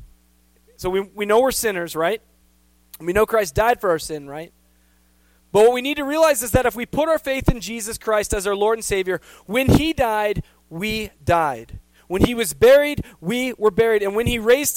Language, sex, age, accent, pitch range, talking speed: English, male, 20-39, American, 130-215 Hz, 210 wpm